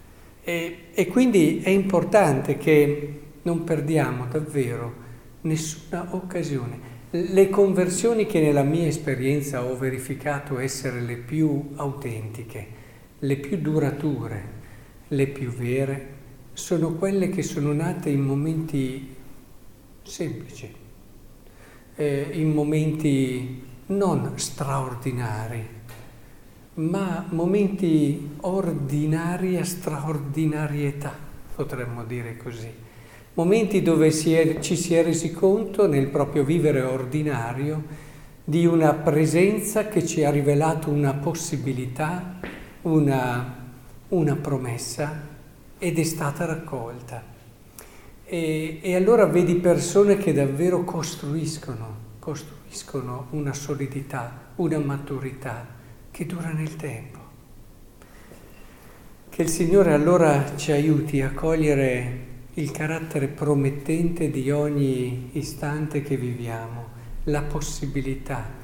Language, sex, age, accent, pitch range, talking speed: Italian, male, 50-69, native, 125-160 Hz, 100 wpm